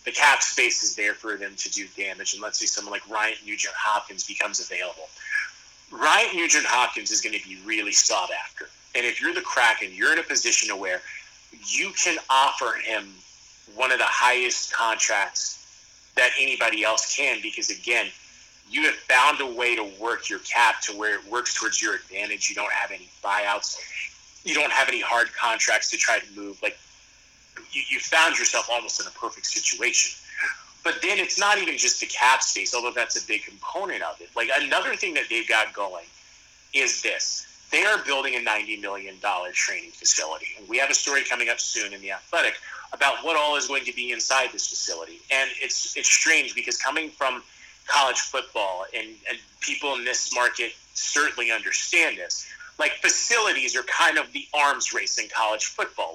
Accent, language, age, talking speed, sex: American, English, 30-49, 190 wpm, male